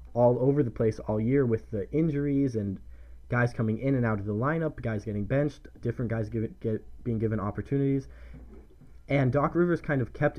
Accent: American